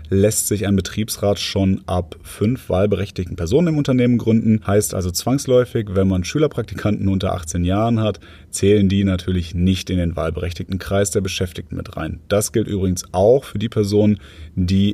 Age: 30-49